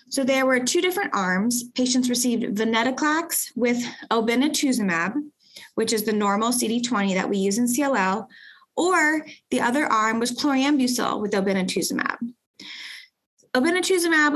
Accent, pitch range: American, 225-280 Hz